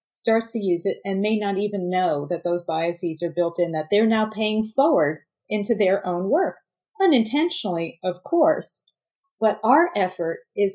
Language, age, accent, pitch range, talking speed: English, 40-59, American, 180-235 Hz, 175 wpm